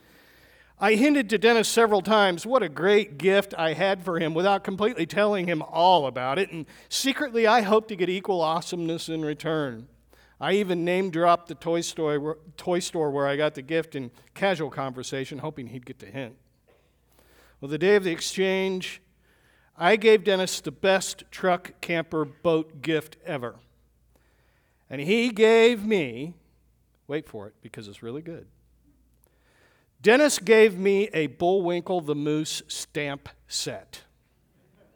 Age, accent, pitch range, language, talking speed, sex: 50-69, American, 145-195 Hz, English, 150 wpm, male